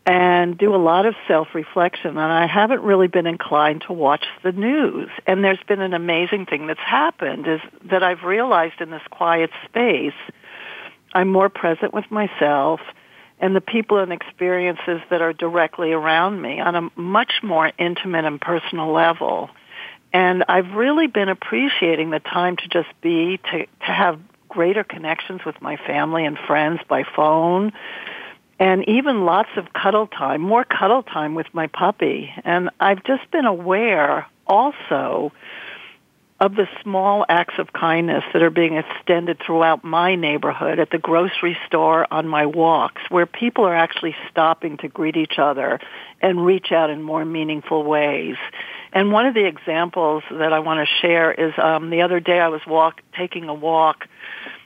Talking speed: 165 wpm